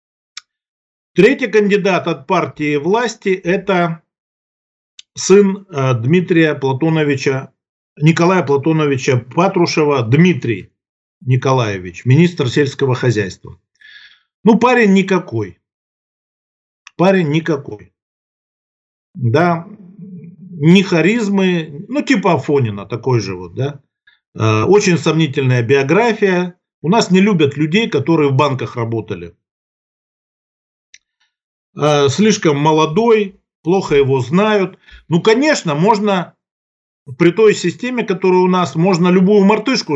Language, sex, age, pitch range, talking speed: Russian, male, 50-69, 140-190 Hz, 95 wpm